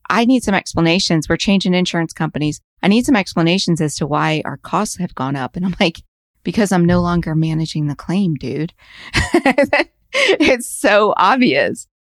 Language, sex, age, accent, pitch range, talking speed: English, female, 30-49, American, 155-195 Hz, 165 wpm